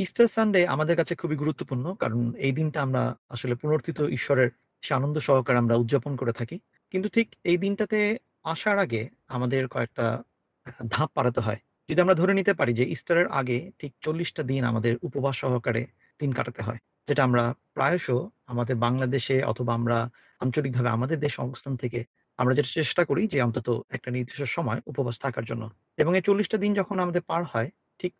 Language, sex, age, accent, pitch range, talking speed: Bengali, male, 40-59, native, 125-170 Hz, 105 wpm